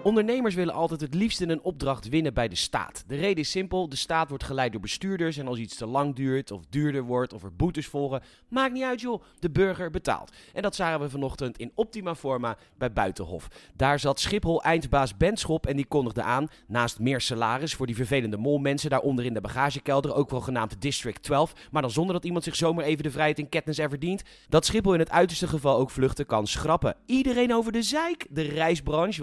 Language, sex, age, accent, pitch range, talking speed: Dutch, male, 30-49, Dutch, 130-165 Hz, 215 wpm